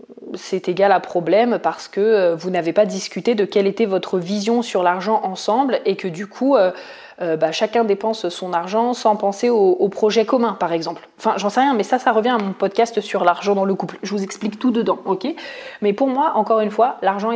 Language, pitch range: French, 185-225 Hz